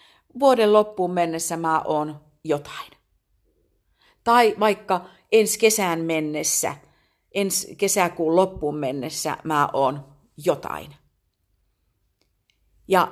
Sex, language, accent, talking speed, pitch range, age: female, Finnish, native, 85 wpm, 145-205 Hz, 50-69